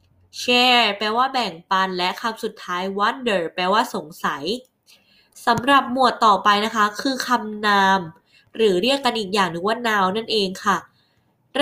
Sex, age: female, 20-39